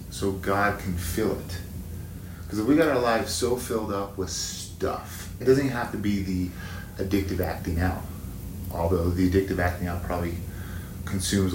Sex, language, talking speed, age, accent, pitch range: male, English, 165 wpm, 30-49, American, 90-100 Hz